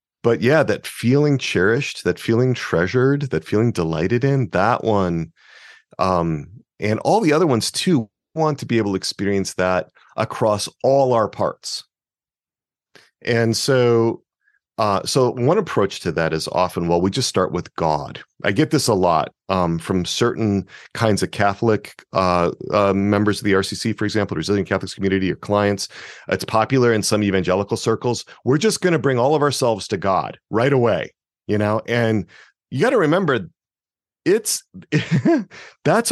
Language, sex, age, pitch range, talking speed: English, male, 40-59, 100-150 Hz, 165 wpm